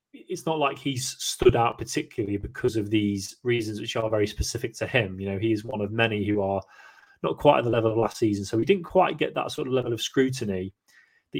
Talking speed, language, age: 240 wpm, English, 20-39